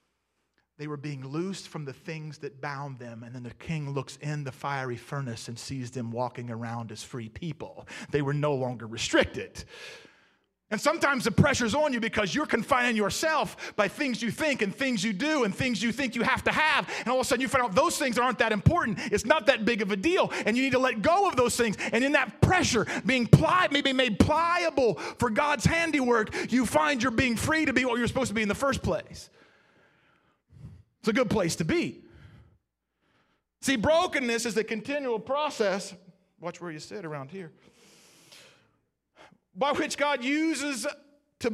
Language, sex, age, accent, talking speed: English, male, 30-49, American, 195 wpm